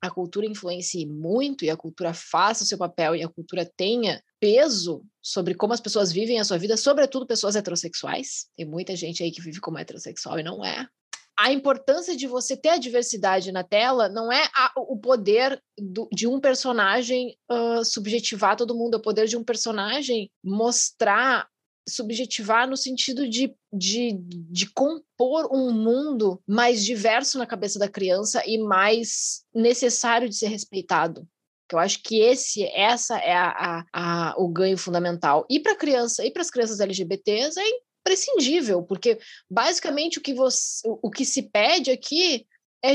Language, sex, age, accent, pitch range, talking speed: Portuguese, female, 20-39, Brazilian, 190-260 Hz, 160 wpm